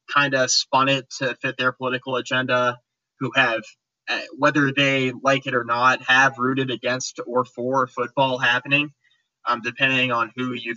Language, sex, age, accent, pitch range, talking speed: English, male, 20-39, American, 120-140 Hz, 160 wpm